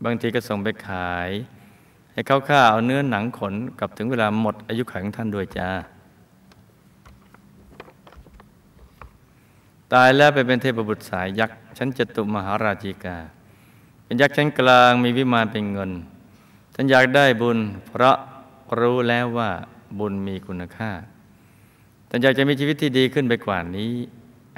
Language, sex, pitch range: Thai, male, 100-125 Hz